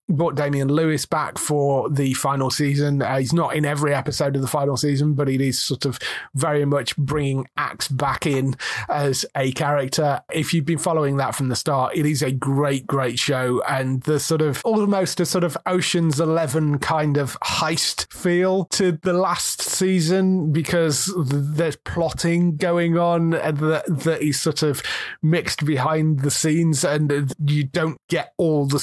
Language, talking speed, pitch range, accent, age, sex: English, 180 wpm, 130-160 Hz, British, 30-49, male